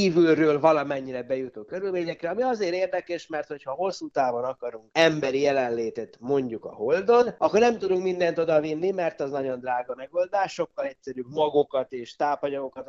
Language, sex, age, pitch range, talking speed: Hungarian, male, 30-49, 125-170 Hz, 155 wpm